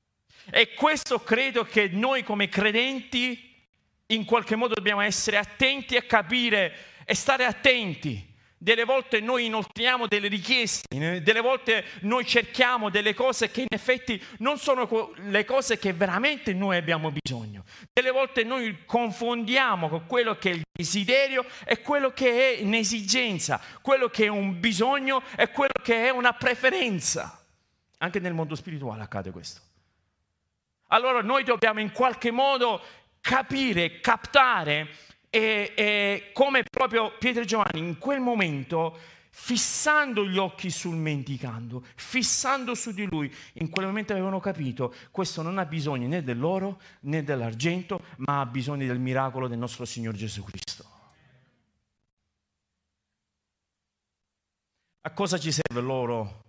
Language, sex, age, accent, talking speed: Italian, male, 40-59, native, 135 wpm